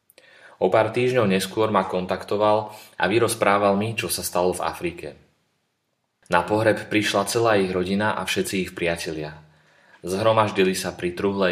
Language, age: Slovak, 20-39